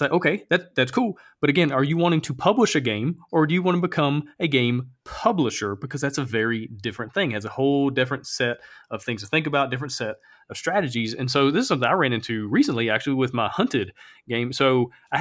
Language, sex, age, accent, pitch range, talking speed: English, male, 30-49, American, 125-155 Hz, 235 wpm